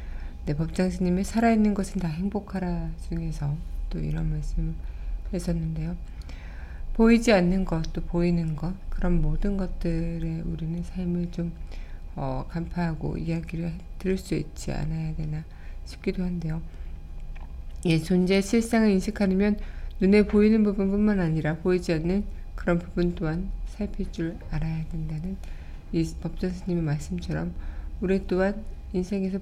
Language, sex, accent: Korean, female, native